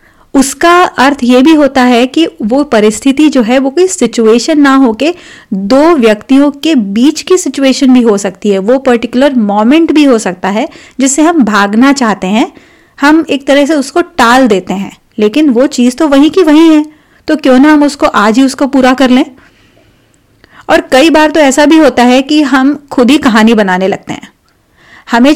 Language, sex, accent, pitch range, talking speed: Hindi, female, native, 230-290 Hz, 195 wpm